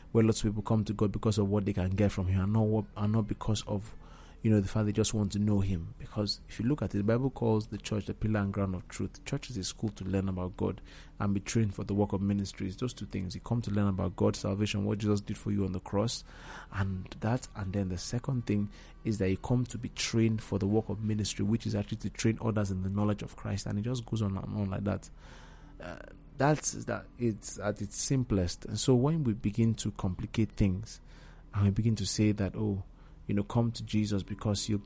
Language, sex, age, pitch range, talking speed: English, male, 30-49, 100-115 Hz, 255 wpm